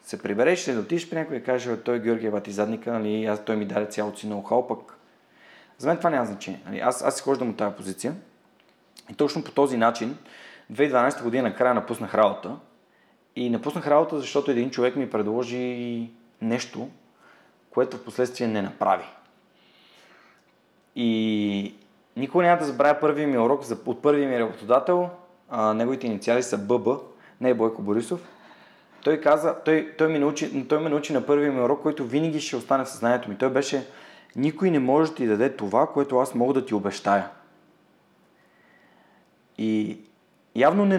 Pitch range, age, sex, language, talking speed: 115-145 Hz, 30-49, male, Bulgarian, 165 wpm